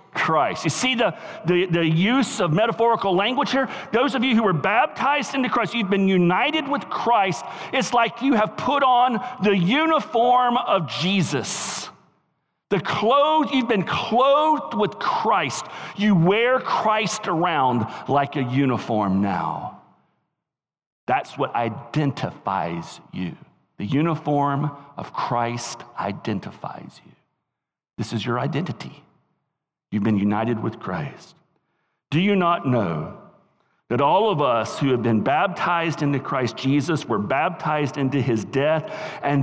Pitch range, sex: 130-200 Hz, male